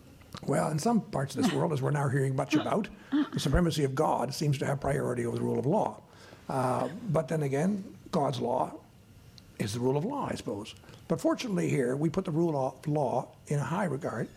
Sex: male